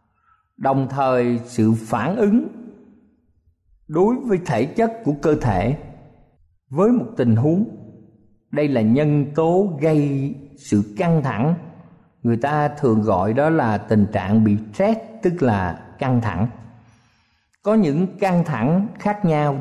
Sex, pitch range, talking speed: male, 110-170 Hz, 135 wpm